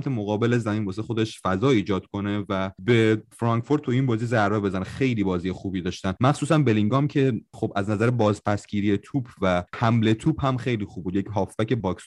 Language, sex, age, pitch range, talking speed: Persian, male, 30-49, 100-125 Hz, 185 wpm